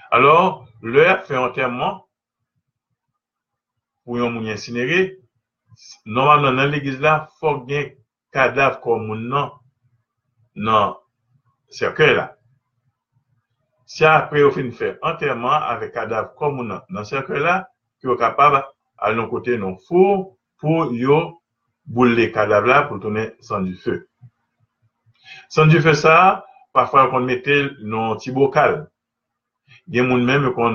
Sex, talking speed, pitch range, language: male, 125 wpm, 115-140 Hz, French